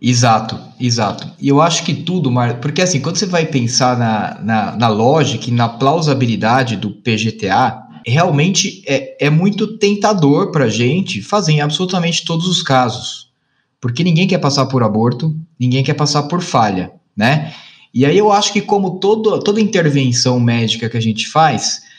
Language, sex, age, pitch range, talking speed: Portuguese, male, 20-39, 125-175 Hz, 165 wpm